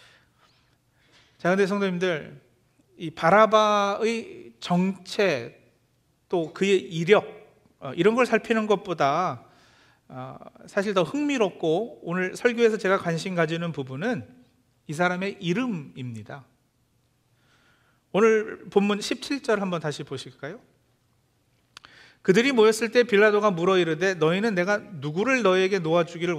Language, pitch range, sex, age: Korean, 145-210 Hz, male, 40-59